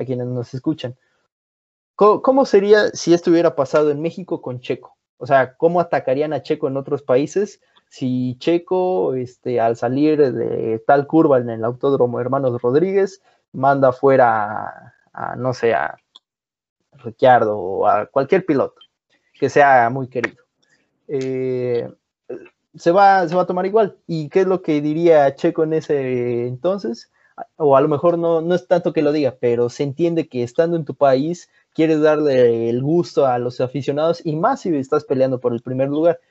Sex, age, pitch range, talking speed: male, 20-39, 125-170 Hz, 175 wpm